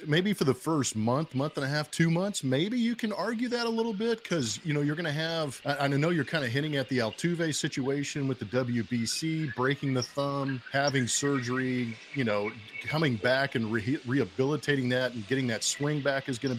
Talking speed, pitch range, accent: 215 wpm, 120-145 Hz, American